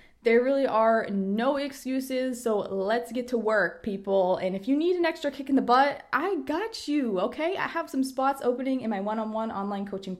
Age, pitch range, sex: 20-39, 195-255 Hz, female